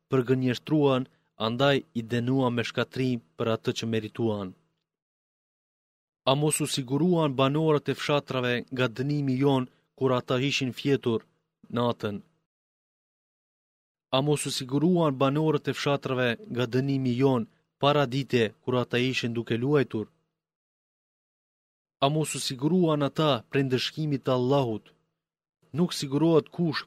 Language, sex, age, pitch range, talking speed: Greek, male, 30-49, 115-140 Hz, 85 wpm